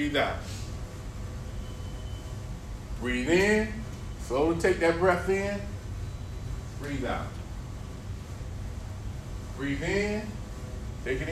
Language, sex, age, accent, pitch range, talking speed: English, male, 40-59, American, 100-125 Hz, 80 wpm